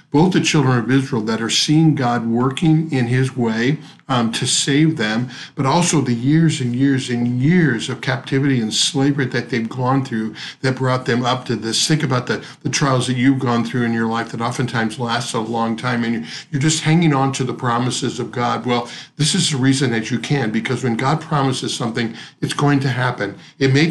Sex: male